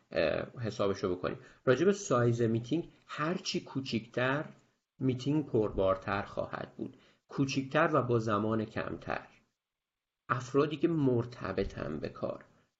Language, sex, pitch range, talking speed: Persian, male, 110-140 Hz, 100 wpm